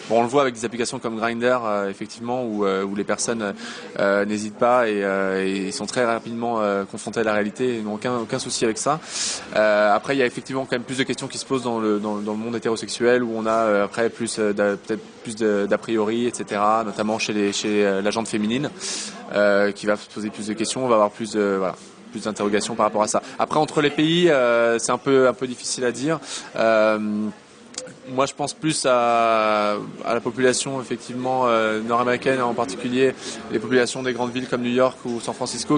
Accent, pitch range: French, 110-125 Hz